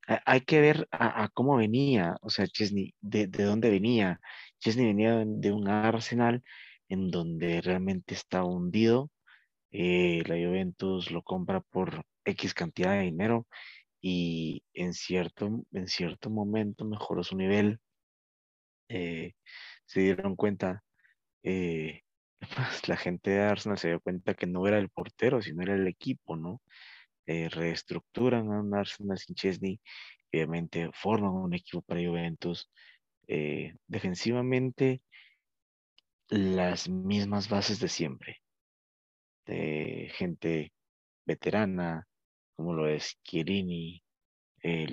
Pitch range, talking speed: 85-105 Hz, 120 wpm